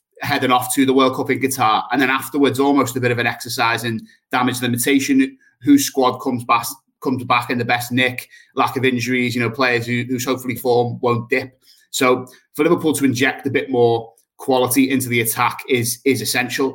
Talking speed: 205 wpm